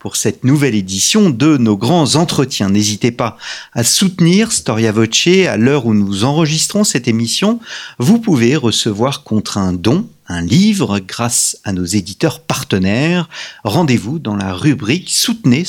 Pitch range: 105-160 Hz